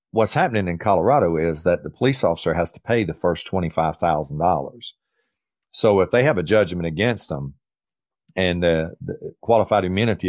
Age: 40-59